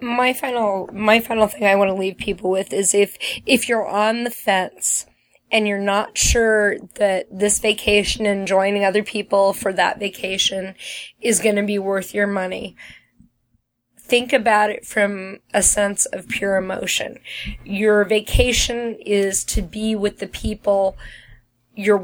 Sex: female